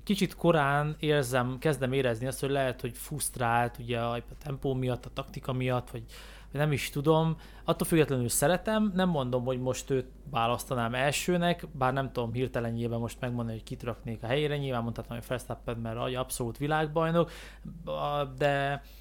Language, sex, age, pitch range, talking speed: Hungarian, male, 20-39, 125-150 Hz, 155 wpm